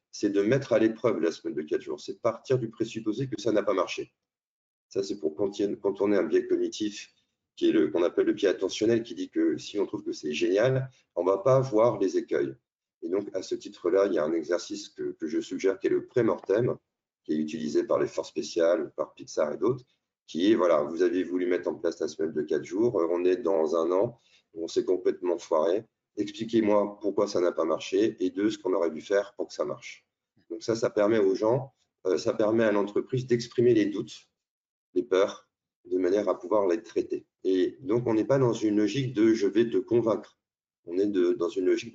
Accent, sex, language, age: French, male, French, 40-59